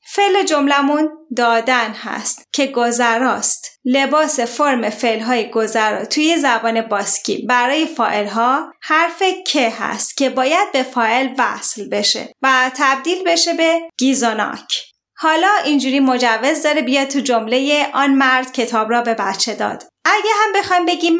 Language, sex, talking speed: Persian, female, 135 wpm